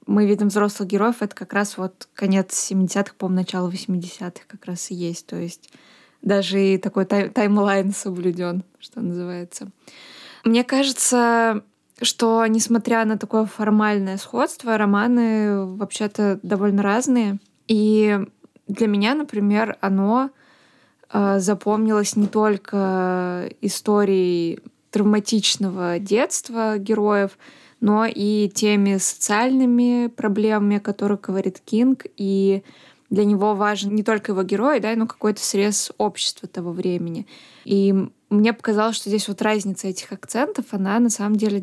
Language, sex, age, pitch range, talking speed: Russian, female, 20-39, 195-220 Hz, 125 wpm